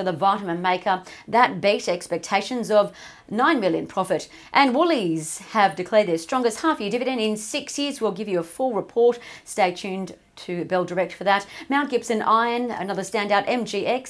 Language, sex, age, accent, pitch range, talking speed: English, female, 40-59, Australian, 195-250 Hz, 165 wpm